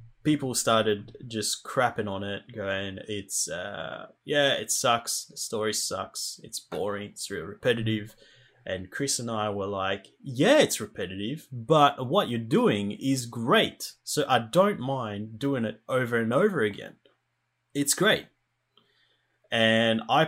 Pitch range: 100-115 Hz